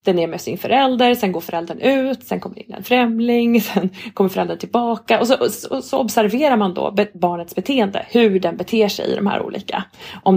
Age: 30-49